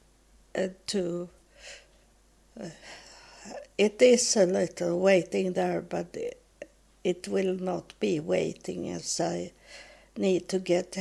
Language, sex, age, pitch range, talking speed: English, female, 60-79, 175-205 Hz, 115 wpm